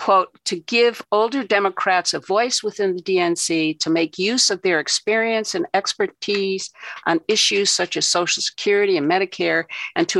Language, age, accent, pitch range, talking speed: English, 60-79, American, 165-235 Hz, 165 wpm